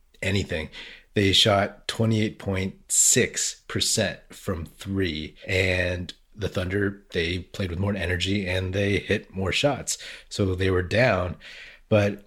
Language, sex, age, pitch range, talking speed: English, male, 30-49, 90-110 Hz, 115 wpm